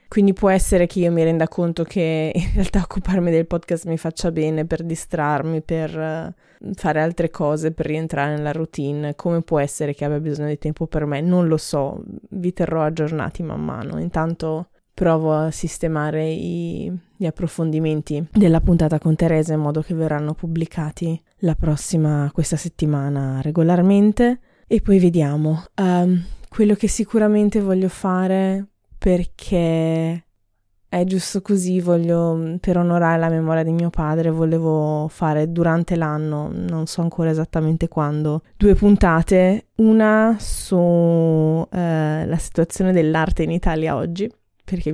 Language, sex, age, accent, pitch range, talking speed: Italian, female, 20-39, native, 155-180 Hz, 140 wpm